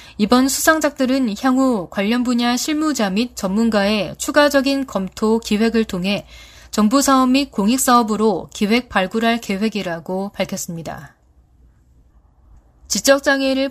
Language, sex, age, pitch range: Korean, female, 20-39, 190-255 Hz